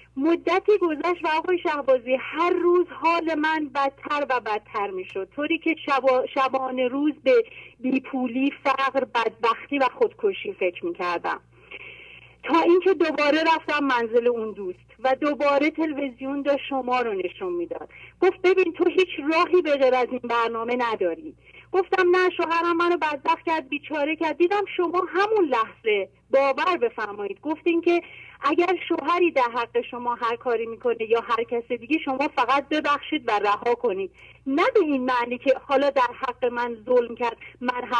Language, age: English, 40-59